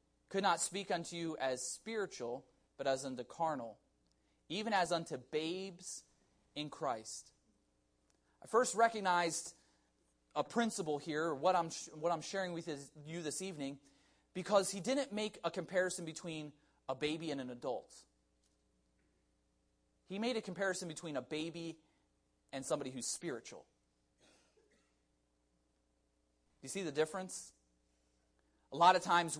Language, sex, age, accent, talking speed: English, male, 30-49, American, 130 wpm